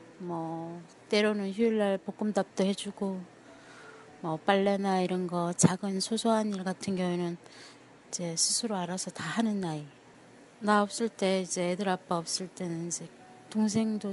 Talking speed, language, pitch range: 125 wpm, English, 180-235 Hz